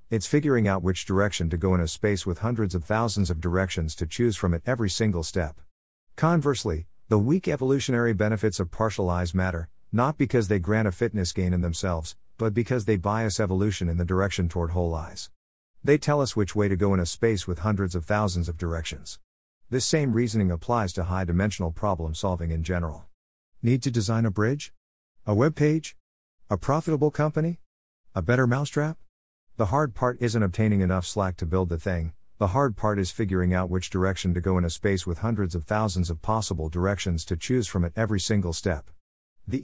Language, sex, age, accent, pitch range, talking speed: English, male, 50-69, American, 85-115 Hz, 195 wpm